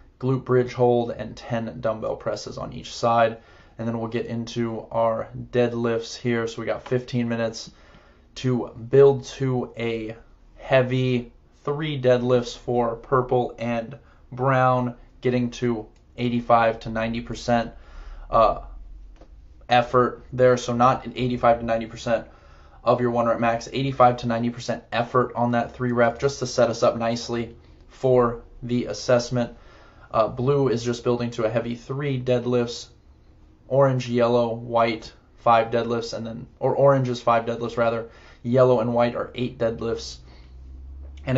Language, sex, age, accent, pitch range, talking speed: English, male, 20-39, American, 115-125 Hz, 145 wpm